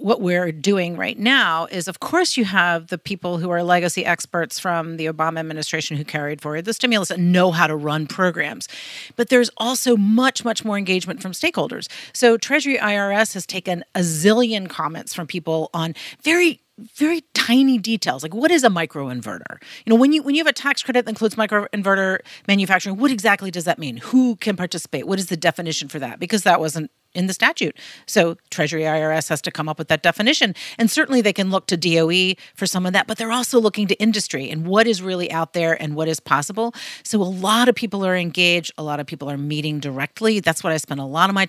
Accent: American